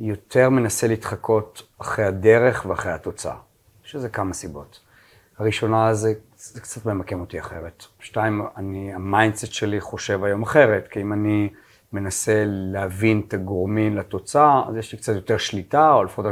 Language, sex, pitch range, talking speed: Hebrew, male, 95-110 Hz, 145 wpm